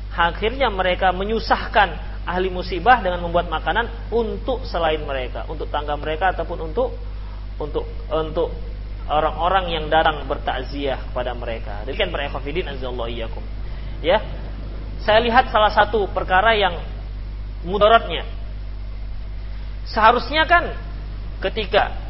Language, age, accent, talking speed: Indonesian, 30-49, native, 105 wpm